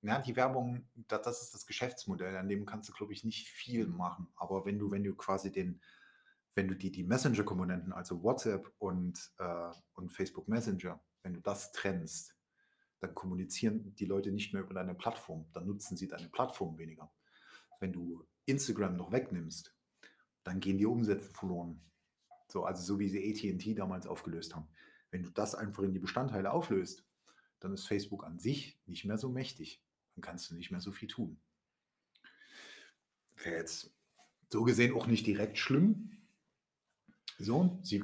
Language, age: German, 30-49